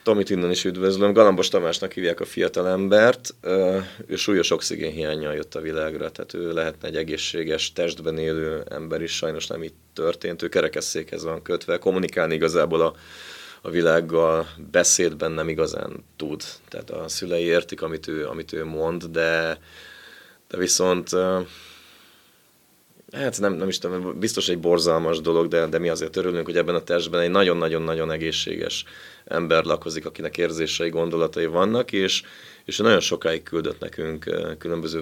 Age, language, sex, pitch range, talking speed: 30-49, Hungarian, male, 80-95 Hz, 150 wpm